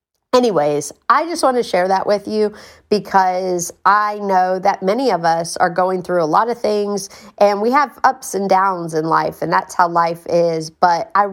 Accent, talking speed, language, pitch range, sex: American, 200 wpm, English, 170-195 Hz, female